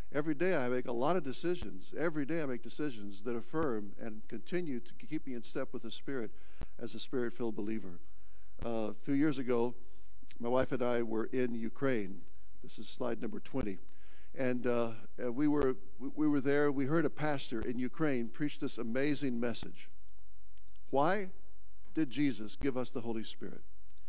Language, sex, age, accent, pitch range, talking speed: English, male, 60-79, American, 110-140 Hz, 175 wpm